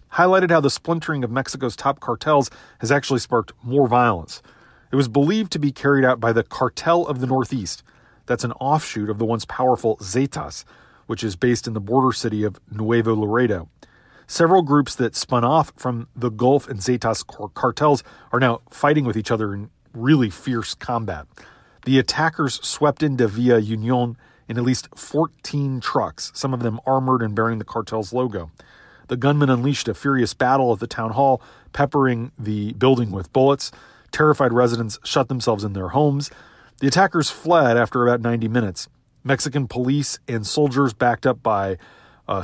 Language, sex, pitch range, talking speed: English, male, 115-140 Hz, 175 wpm